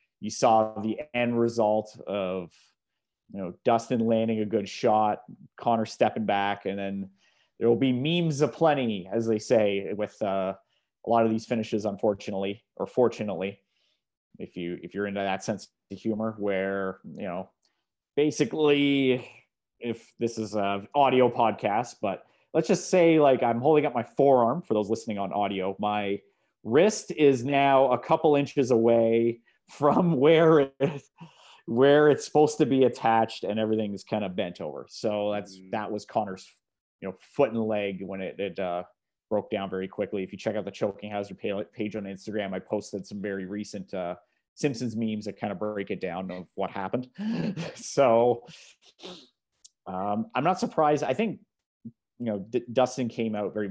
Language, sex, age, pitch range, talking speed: English, male, 30-49, 100-125 Hz, 170 wpm